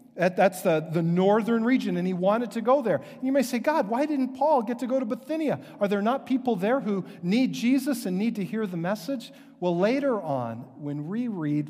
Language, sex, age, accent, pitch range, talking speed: English, male, 50-69, American, 140-210 Hz, 225 wpm